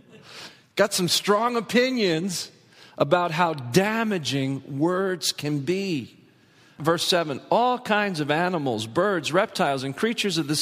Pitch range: 125-175 Hz